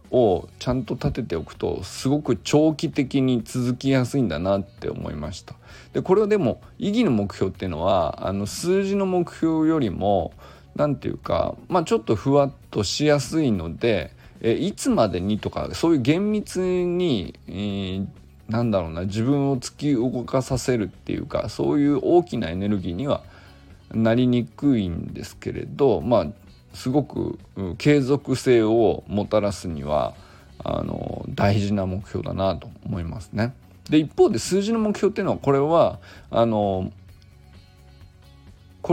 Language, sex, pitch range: Japanese, male, 95-140 Hz